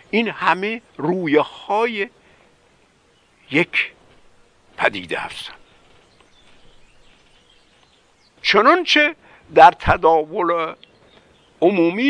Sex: male